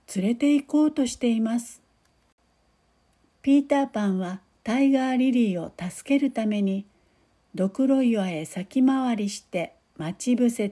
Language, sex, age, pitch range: Japanese, female, 60-79, 205-270 Hz